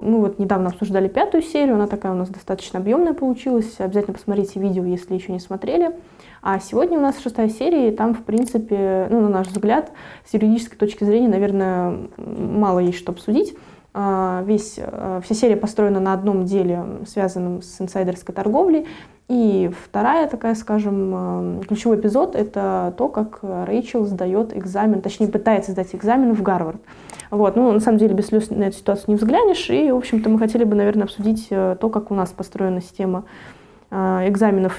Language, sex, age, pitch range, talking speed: Russian, female, 20-39, 190-225 Hz, 175 wpm